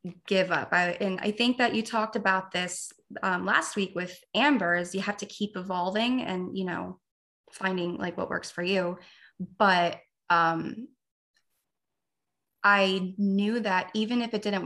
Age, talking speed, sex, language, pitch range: 20-39, 165 wpm, female, English, 180-235 Hz